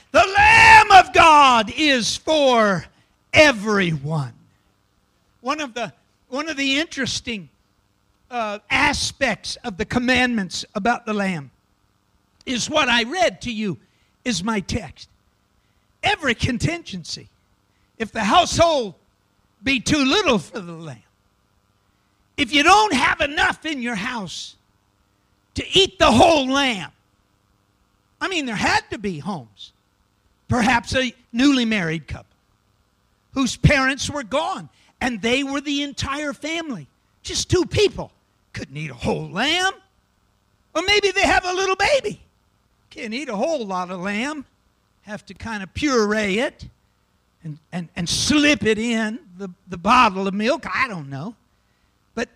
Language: English